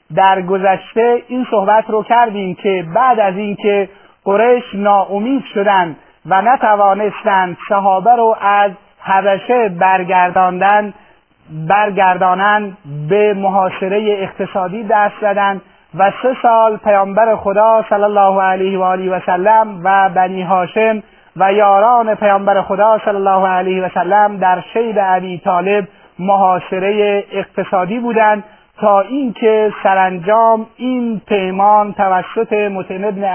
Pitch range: 190-215 Hz